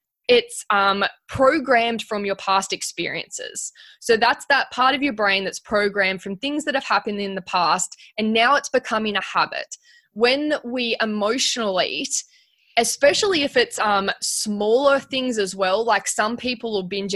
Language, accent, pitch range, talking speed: English, Australian, 195-245 Hz, 165 wpm